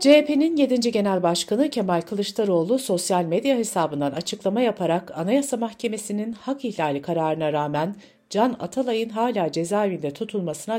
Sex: female